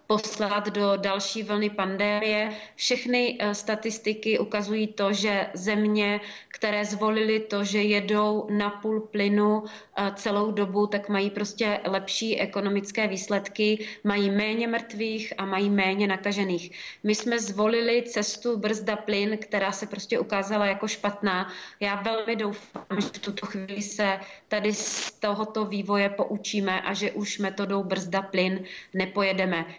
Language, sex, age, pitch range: Czech, female, 30-49, 195-215 Hz